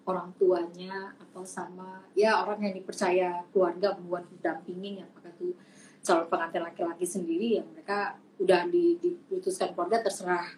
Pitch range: 185-235 Hz